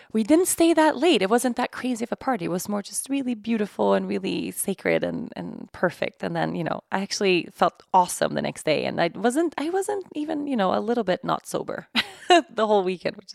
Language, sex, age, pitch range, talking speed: English, female, 20-39, 180-260 Hz, 235 wpm